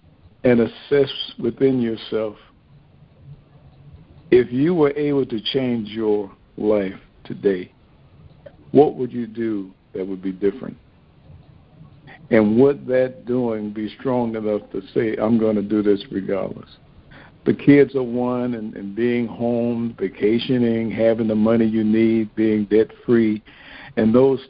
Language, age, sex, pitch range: English, 60-79, male, 105-125 Hz